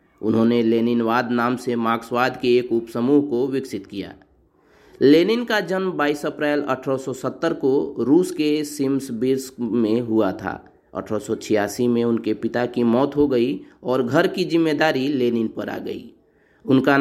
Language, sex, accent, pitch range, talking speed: Hindi, male, native, 120-150 Hz, 145 wpm